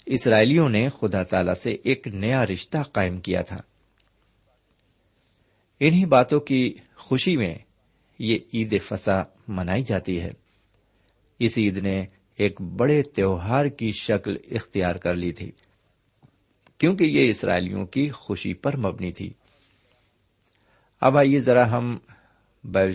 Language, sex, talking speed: Urdu, male, 125 wpm